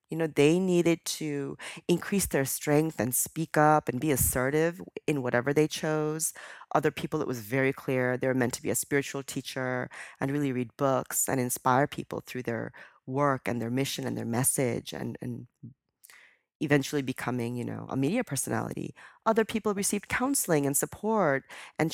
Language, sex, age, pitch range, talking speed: English, female, 40-59, 130-185 Hz, 175 wpm